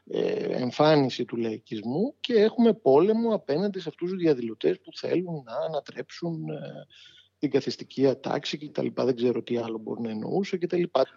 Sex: male